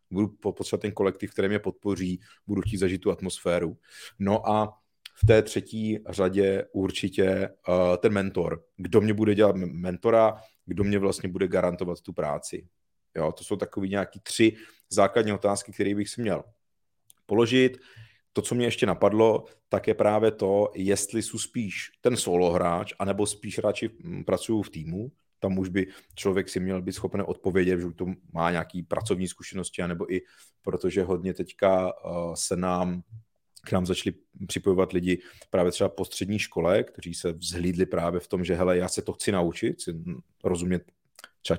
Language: Czech